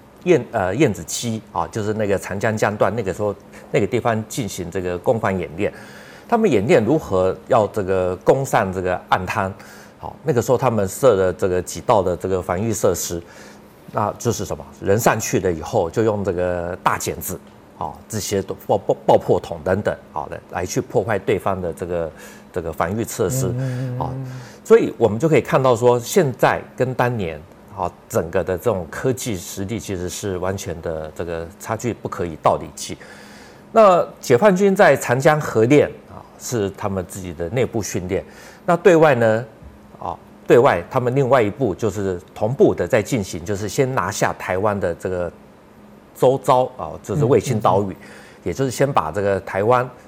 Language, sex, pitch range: Chinese, male, 95-130 Hz